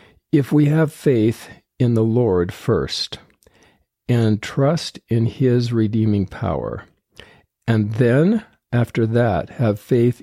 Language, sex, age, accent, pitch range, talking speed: English, male, 50-69, American, 100-125 Hz, 115 wpm